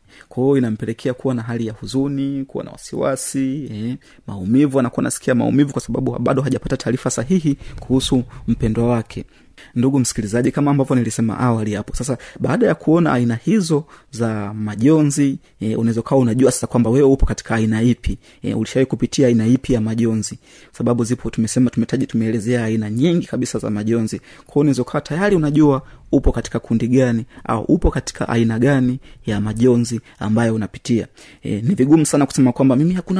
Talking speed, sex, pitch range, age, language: 165 wpm, male, 115-140 Hz, 30-49, Swahili